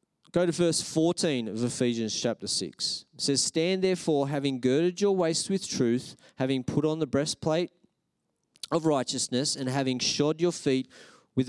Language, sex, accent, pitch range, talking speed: English, male, Australian, 125-160 Hz, 160 wpm